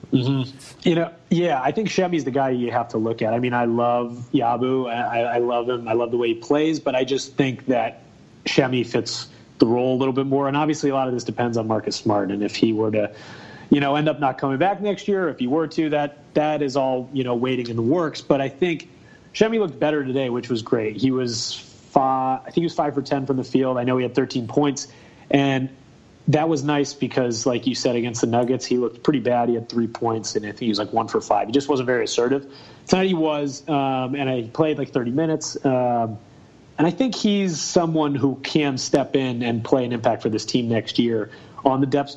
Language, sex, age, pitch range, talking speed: English, male, 30-49, 120-145 Hz, 250 wpm